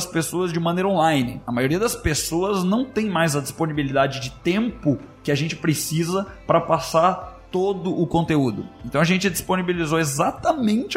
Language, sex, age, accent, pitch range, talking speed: Portuguese, male, 20-39, Brazilian, 135-180 Hz, 160 wpm